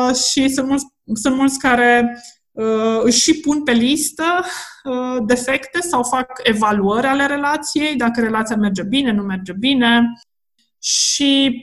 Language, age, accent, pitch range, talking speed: Romanian, 20-39, native, 220-280 Hz, 135 wpm